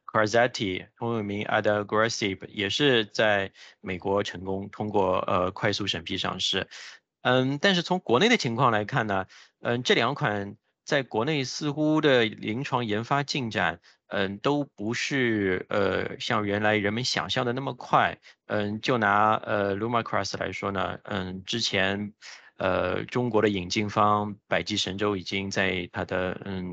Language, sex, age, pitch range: English, male, 20-39, 95-110 Hz